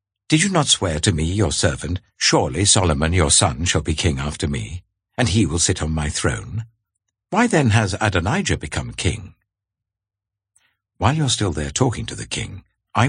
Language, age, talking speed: English, 60-79, 185 wpm